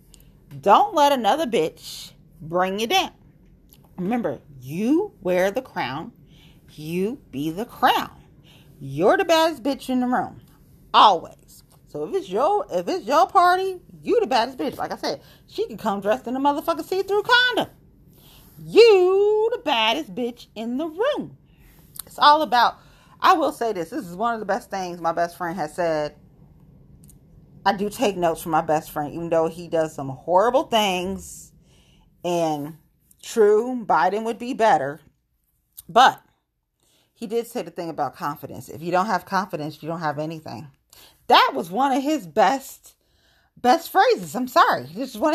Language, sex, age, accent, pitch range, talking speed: English, female, 40-59, American, 155-260 Hz, 165 wpm